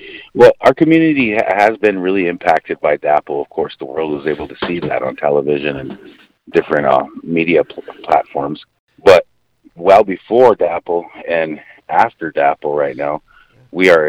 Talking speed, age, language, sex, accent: 160 wpm, 40-59, English, male, American